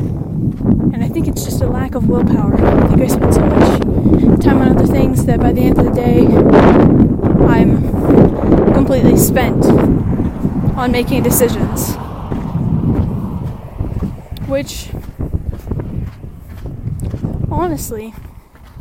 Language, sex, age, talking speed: English, female, 10-29, 110 wpm